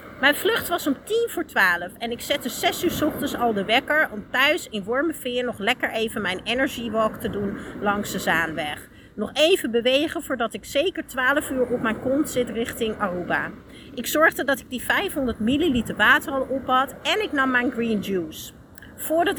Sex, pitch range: female, 225-290 Hz